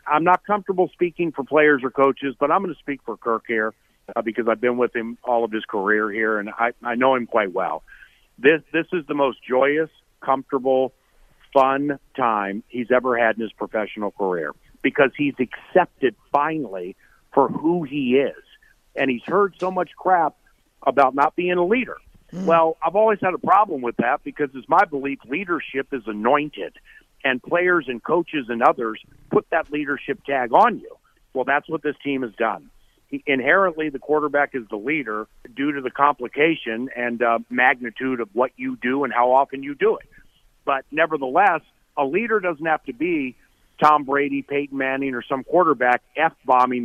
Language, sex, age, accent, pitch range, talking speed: English, male, 50-69, American, 120-155 Hz, 180 wpm